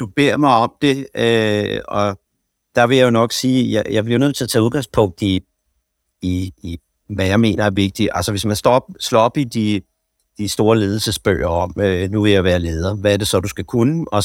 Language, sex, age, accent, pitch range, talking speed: Danish, male, 60-79, native, 100-125 Hz, 230 wpm